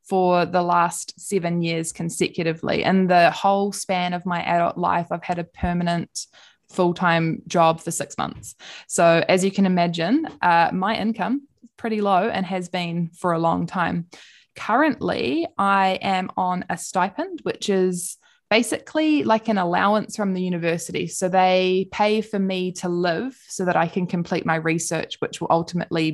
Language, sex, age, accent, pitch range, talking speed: English, female, 20-39, Australian, 170-195 Hz, 170 wpm